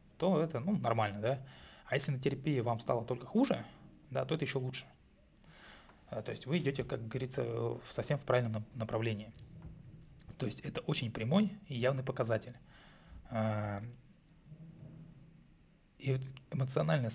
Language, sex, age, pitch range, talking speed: Russian, male, 20-39, 115-140 Hz, 135 wpm